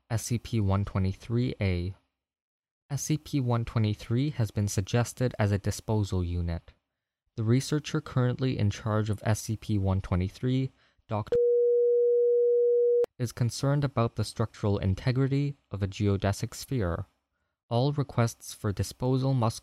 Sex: male